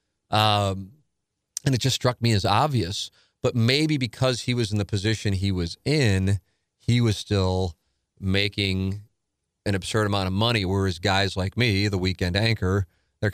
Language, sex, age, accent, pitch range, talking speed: English, male, 30-49, American, 90-105 Hz, 160 wpm